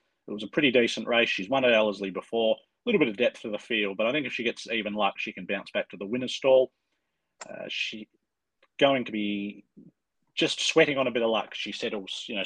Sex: male